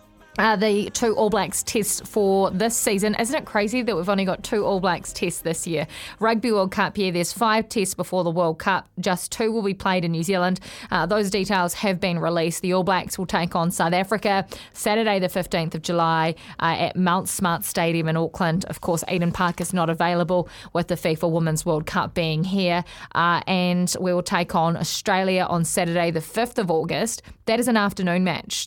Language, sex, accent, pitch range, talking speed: English, female, Australian, 170-200 Hz, 210 wpm